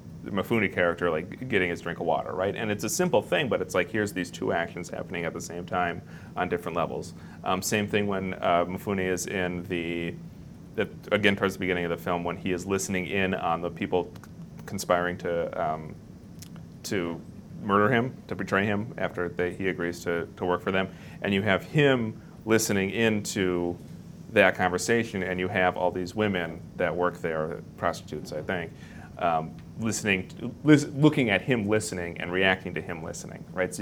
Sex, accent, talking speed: male, American, 190 wpm